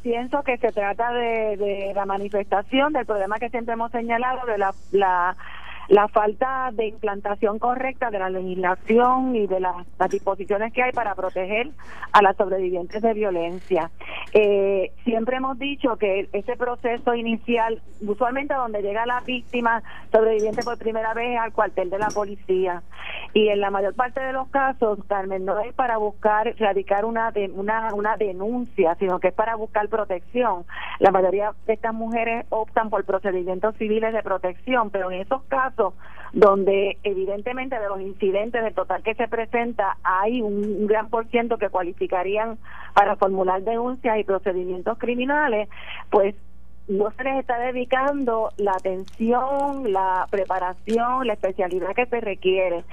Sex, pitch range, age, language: female, 195-235 Hz, 40-59, Spanish